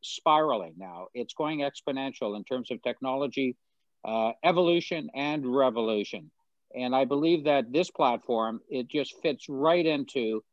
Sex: male